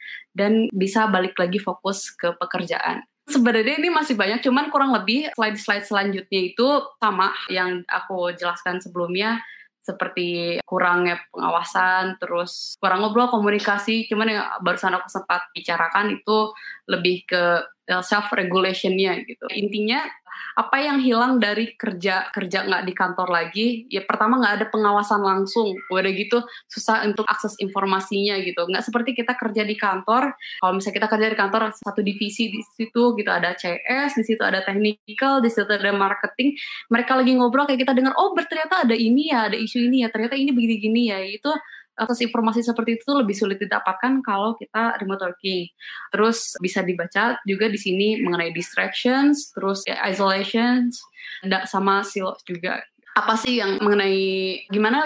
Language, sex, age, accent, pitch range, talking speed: Indonesian, female, 20-39, native, 190-240 Hz, 155 wpm